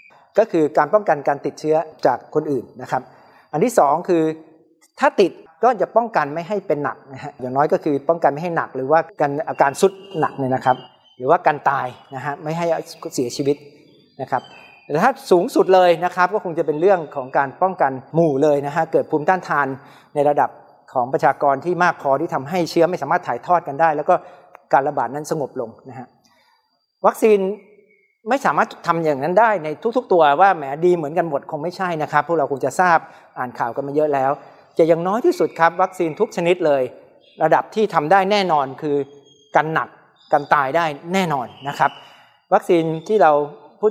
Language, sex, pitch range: Thai, male, 145-180 Hz